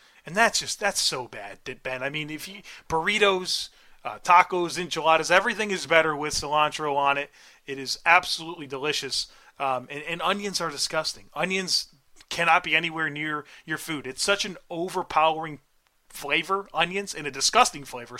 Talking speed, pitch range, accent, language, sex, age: 160 wpm, 150-190 Hz, American, English, male, 30-49